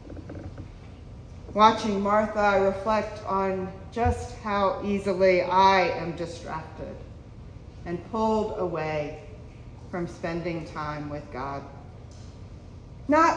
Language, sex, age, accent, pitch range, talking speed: English, female, 40-59, American, 150-240 Hz, 90 wpm